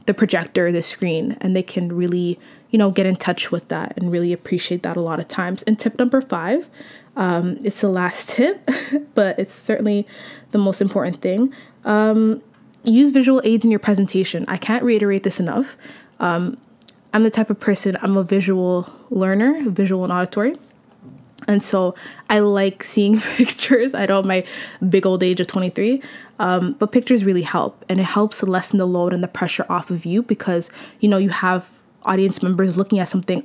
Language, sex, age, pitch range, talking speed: English, female, 20-39, 180-225 Hz, 190 wpm